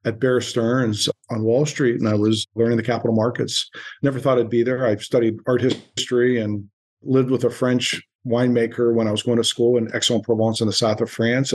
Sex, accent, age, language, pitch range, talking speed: male, American, 50-69, English, 115-140 Hz, 215 wpm